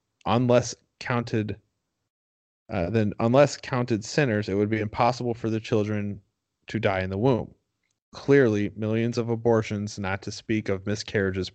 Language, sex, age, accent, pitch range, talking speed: English, male, 30-49, American, 100-120 Hz, 145 wpm